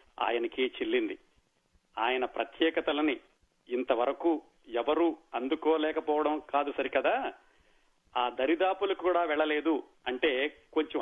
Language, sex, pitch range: Telugu, male, 155-200 Hz